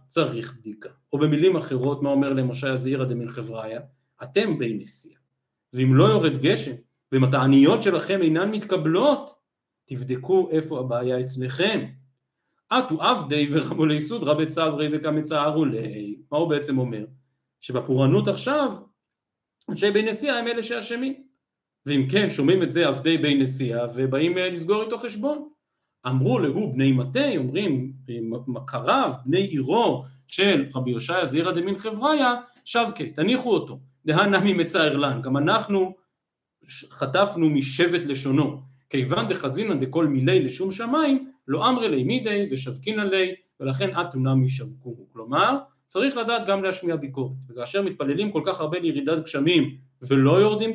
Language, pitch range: Hebrew, 130-190 Hz